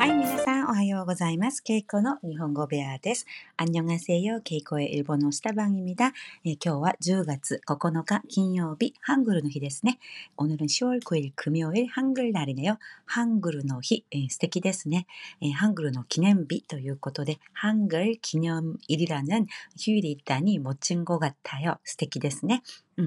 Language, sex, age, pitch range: Korean, female, 40-59, 150-220 Hz